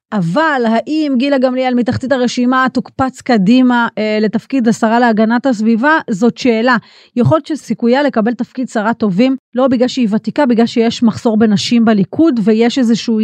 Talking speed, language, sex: 145 wpm, Hebrew, female